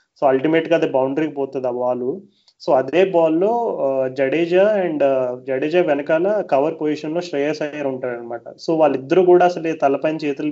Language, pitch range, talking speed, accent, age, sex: Telugu, 135-160 Hz, 160 wpm, native, 30-49, male